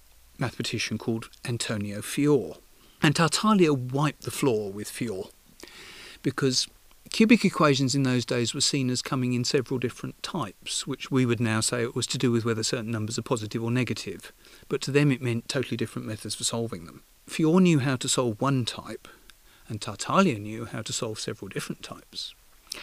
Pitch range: 115-145 Hz